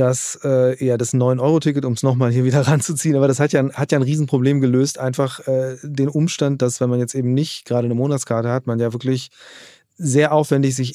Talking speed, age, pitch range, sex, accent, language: 220 wpm, 30-49, 125-140 Hz, male, German, German